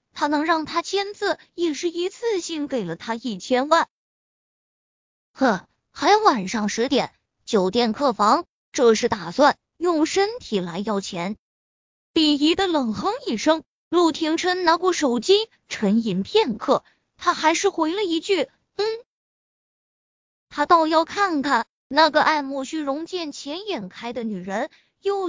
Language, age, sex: Chinese, 20-39, female